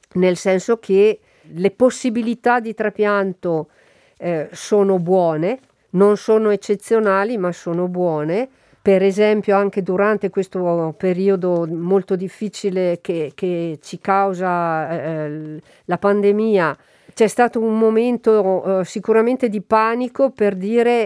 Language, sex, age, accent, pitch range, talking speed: Italian, female, 50-69, native, 180-215 Hz, 115 wpm